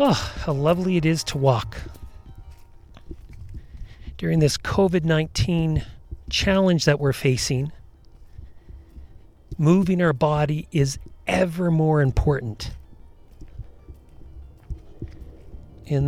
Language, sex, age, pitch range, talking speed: English, male, 40-59, 100-150 Hz, 80 wpm